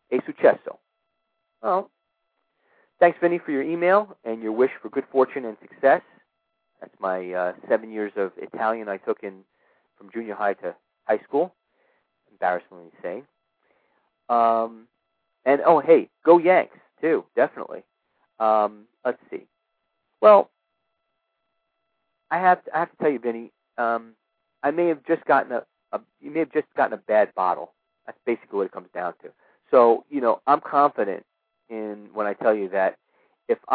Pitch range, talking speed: 105-170 Hz, 160 wpm